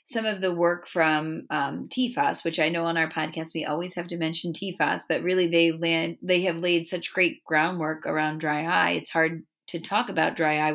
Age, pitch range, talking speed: 30-49, 165-205 Hz, 220 wpm